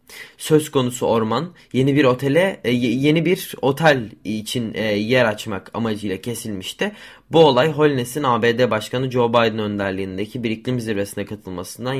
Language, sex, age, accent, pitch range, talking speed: Turkish, male, 20-39, native, 110-140 Hz, 140 wpm